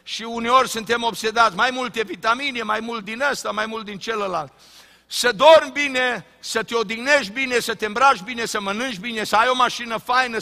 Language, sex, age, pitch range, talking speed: Romanian, male, 50-69, 185-245 Hz, 195 wpm